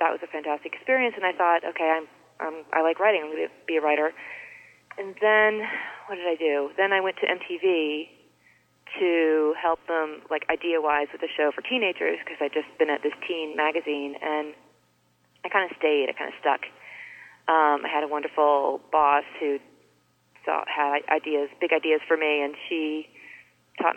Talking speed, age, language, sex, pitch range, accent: 190 wpm, 30-49, English, female, 150-175 Hz, American